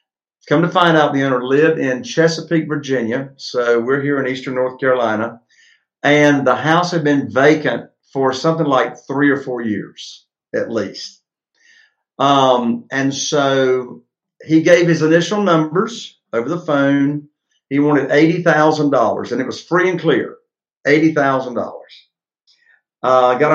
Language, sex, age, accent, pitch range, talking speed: English, male, 50-69, American, 130-160 Hz, 145 wpm